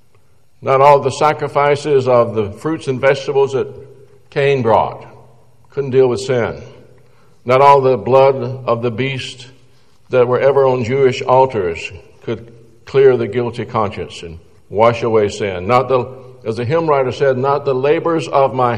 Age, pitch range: 60-79, 115-150 Hz